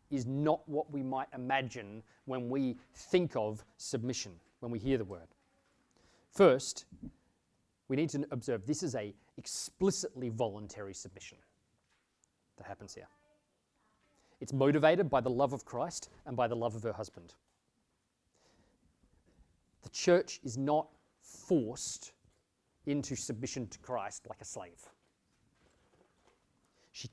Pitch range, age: 115-140 Hz, 30-49